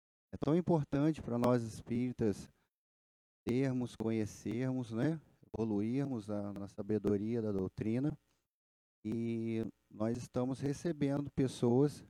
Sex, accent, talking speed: male, Brazilian, 100 wpm